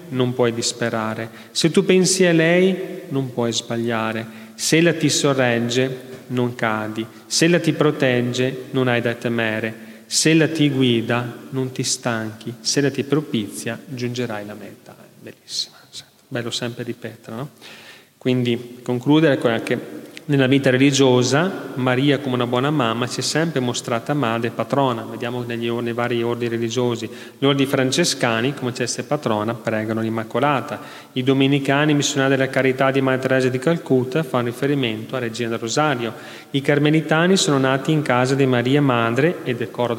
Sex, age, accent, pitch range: male, 30-49, native, 120-145 Hz